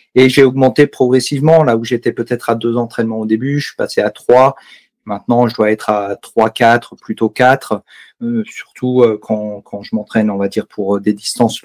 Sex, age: male, 40-59